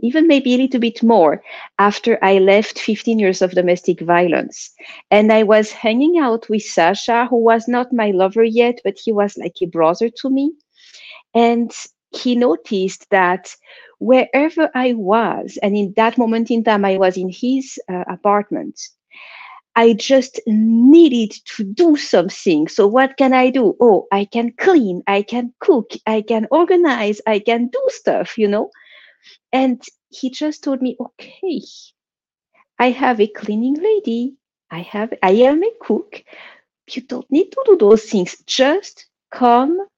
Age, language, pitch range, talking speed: 50-69, English, 210-295 Hz, 160 wpm